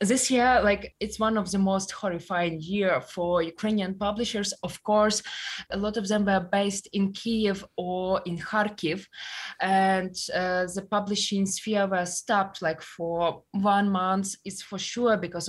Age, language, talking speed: 20-39, English, 160 wpm